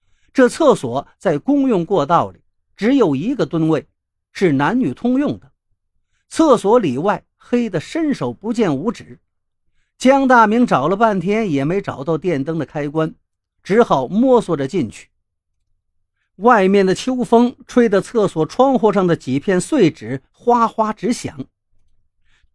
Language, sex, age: Chinese, male, 50-69